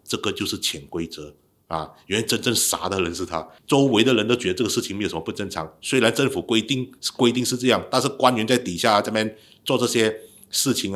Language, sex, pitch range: Chinese, male, 90-120 Hz